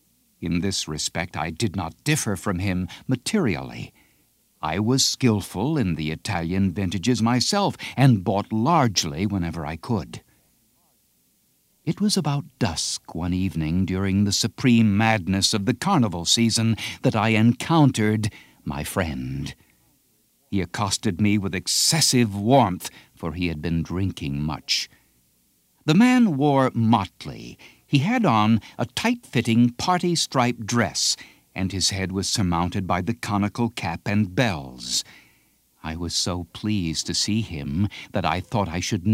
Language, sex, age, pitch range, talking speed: English, male, 60-79, 90-125 Hz, 140 wpm